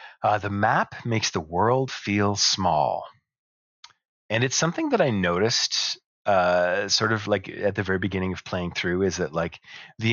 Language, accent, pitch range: English, American, 90-110 Hz